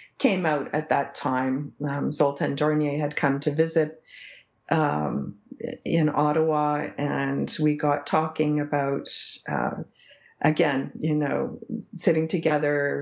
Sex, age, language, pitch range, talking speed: female, 50-69, English, 140-155 Hz, 120 wpm